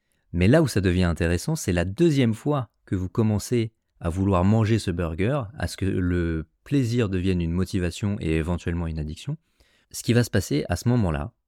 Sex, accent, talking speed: male, French, 200 wpm